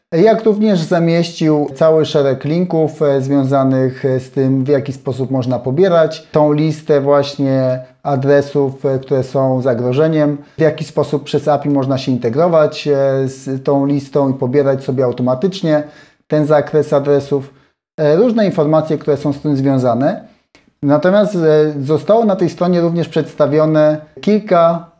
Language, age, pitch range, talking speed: Polish, 30-49, 135-160 Hz, 130 wpm